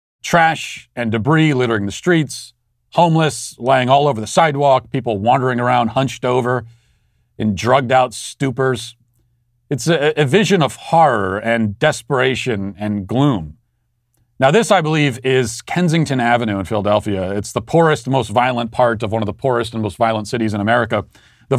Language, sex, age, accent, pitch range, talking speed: English, male, 40-59, American, 115-140 Hz, 160 wpm